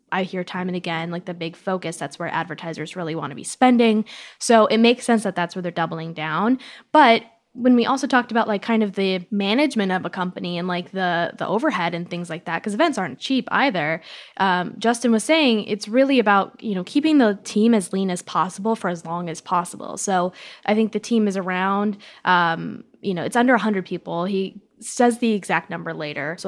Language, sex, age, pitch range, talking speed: English, female, 10-29, 180-225 Hz, 220 wpm